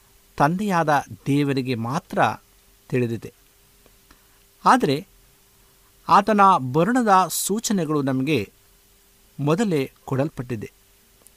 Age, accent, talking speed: 50-69, native, 60 wpm